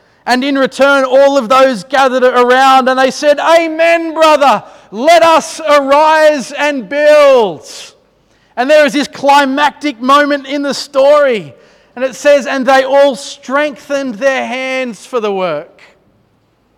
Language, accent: English, Australian